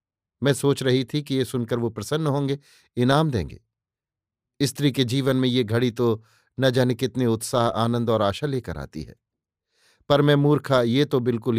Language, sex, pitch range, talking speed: Hindi, male, 115-140 Hz, 180 wpm